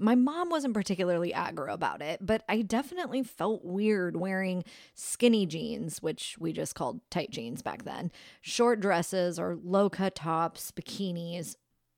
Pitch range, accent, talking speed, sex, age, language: 160-220 Hz, American, 145 wpm, female, 30-49, English